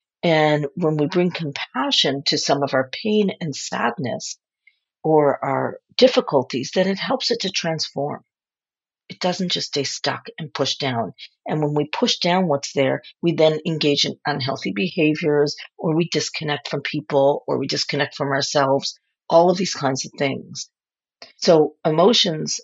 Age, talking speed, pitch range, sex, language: 50-69, 160 wpm, 150-205 Hz, female, English